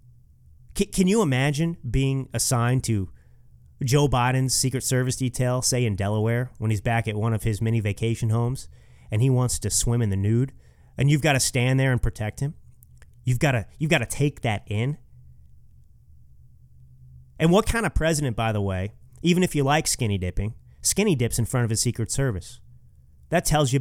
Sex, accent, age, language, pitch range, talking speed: male, American, 30-49, English, 105-145 Hz, 185 wpm